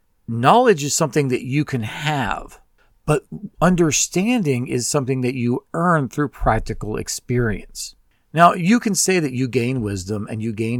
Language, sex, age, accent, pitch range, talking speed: English, male, 40-59, American, 110-150 Hz, 155 wpm